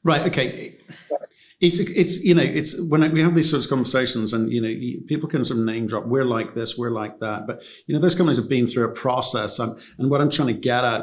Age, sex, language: 50-69, male, English